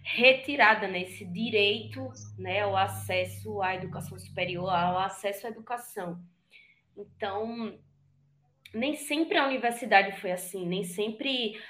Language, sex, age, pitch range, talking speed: Portuguese, female, 20-39, 190-260 Hz, 120 wpm